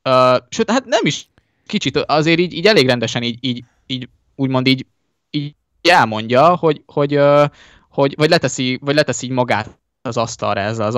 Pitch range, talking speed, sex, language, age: 115-135 Hz, 175 wpm, male, Hungarian, 20-39